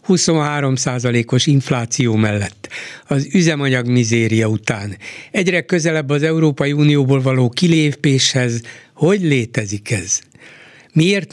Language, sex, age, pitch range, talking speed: Hungarian, male, 60-79, 115-145 Hz, 100 wpm